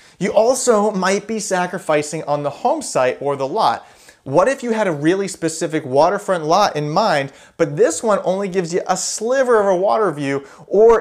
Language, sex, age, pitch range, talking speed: English, male, 30-49, 155-205 Hz, 195 wpm